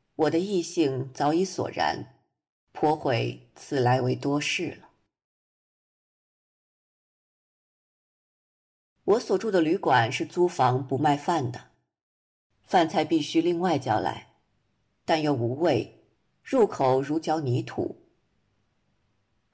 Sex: female